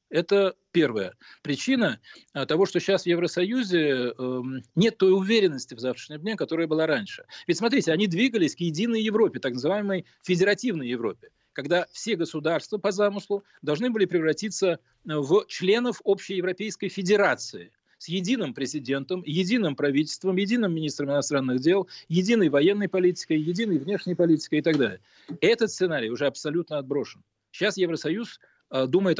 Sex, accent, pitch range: male, native, 140-190 Hz